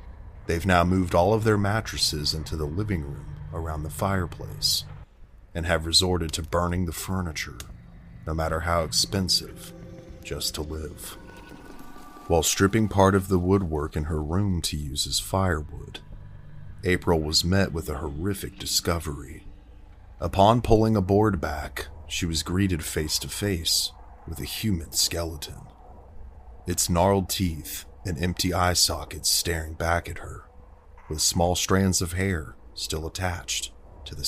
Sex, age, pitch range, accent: male, 30-49, 80-95 Hz, American